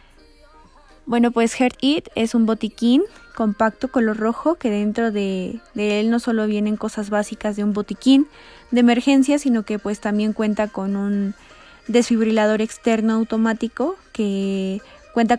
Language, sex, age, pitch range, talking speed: Spanish, female, 20-39, 210-235 Hz, 145 wpm